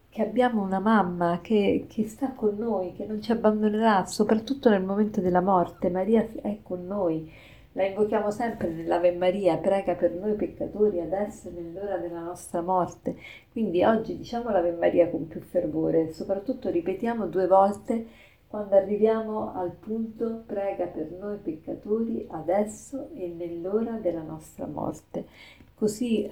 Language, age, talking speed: Italian, 40-59, 145 wpm